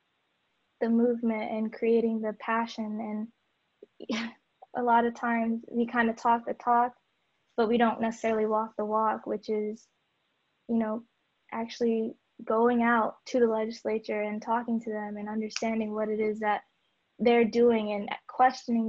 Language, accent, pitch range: English, American, 220-235 Hz